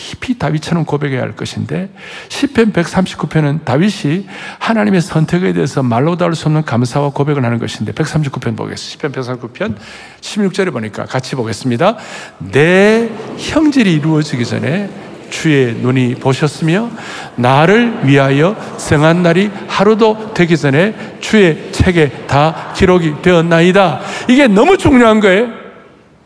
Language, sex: Korean, male